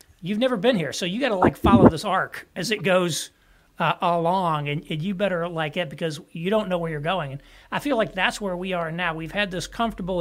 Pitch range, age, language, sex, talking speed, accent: 160-200 Hz, 40-59, English, male, 260 wpm, American